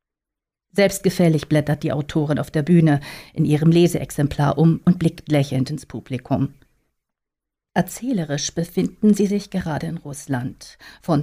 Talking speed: 130 wpm